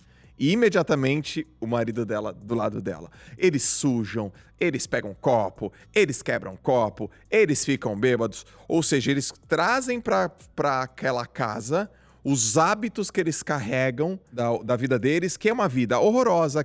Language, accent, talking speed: Portuguese, Brazilian, 145 wpm